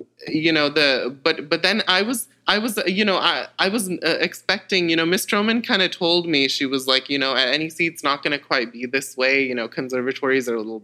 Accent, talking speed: American, 260 wpm